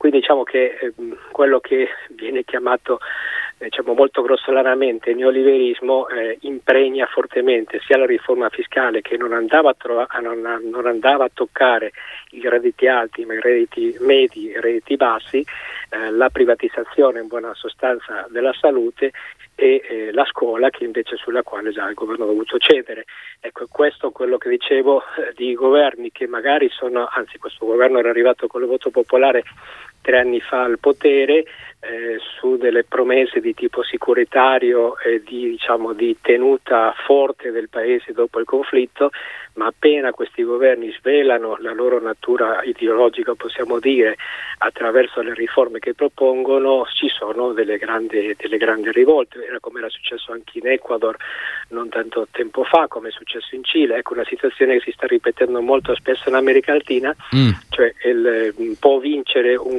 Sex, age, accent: male, 20-39, native